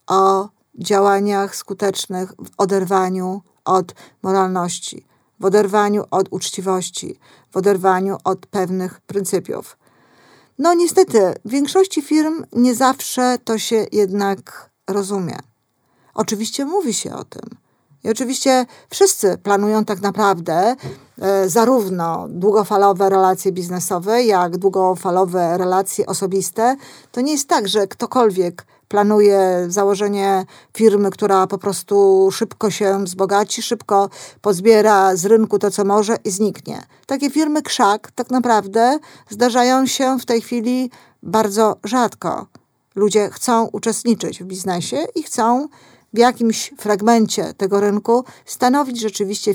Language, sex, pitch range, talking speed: Polish, female, 190-230 Hz, 115 wpm